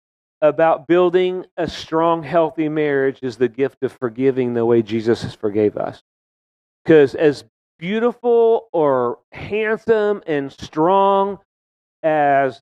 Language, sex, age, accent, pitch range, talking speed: English, male, 40-59, American, 140-180 Hz, 120 wpm